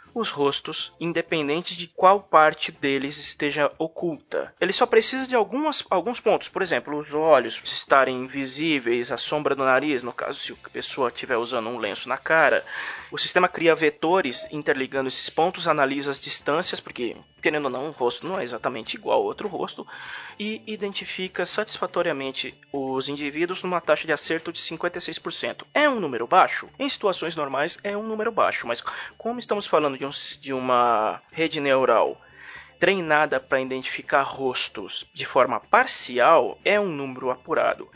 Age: 20-39